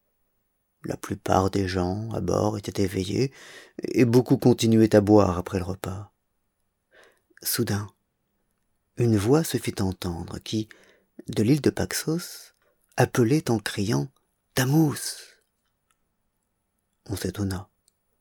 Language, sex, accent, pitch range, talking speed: French, male, French, 100-120 Hz, 110 wpm